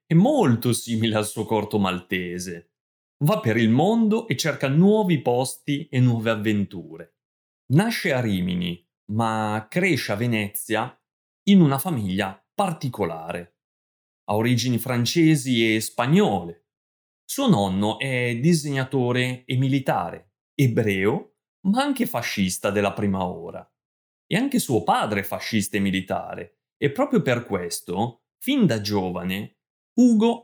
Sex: male